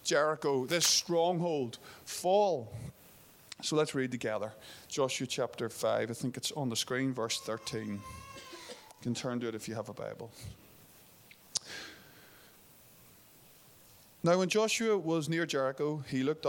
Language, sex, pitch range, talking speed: English, male, 115-140 Hz, 135 wpm